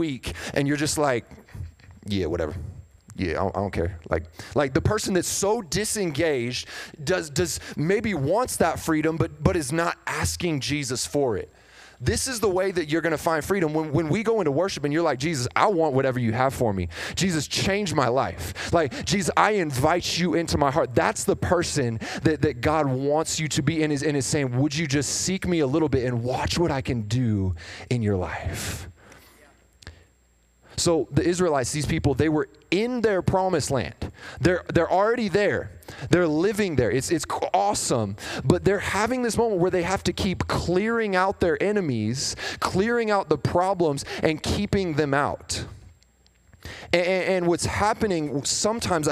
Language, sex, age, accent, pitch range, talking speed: English, male, 30-49, American, 115-175 Hz, 185 wpm